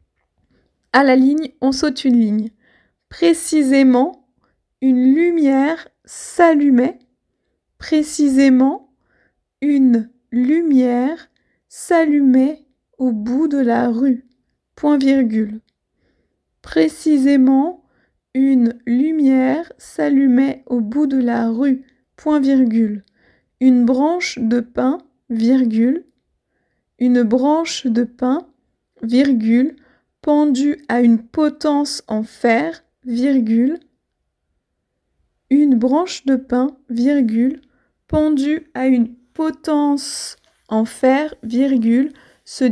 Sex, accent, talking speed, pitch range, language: female, French, 90 wpm, 240-290 Hz, French